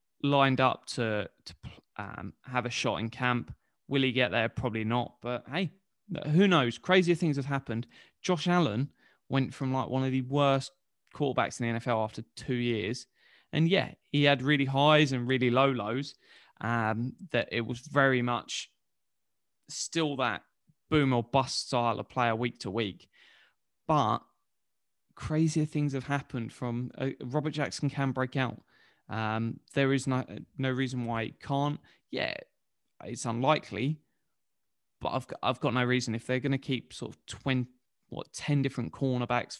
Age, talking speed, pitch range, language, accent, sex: 20-39, 170 wpm, 120-150 Hz, English, British, male